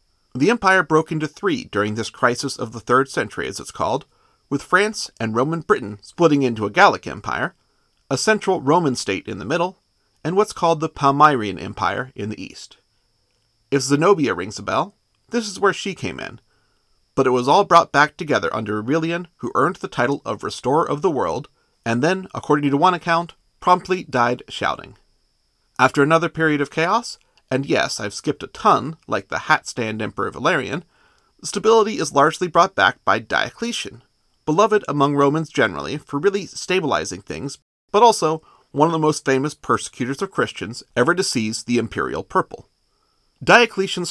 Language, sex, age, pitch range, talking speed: English, male, 40-59, 120-180 Hz, 175 wpm